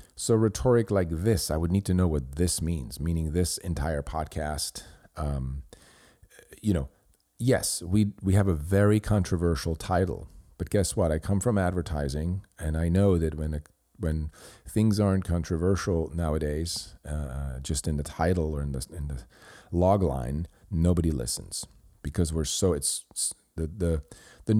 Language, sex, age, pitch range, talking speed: English, male, 40-59, 80-100 Hz, 165 wpm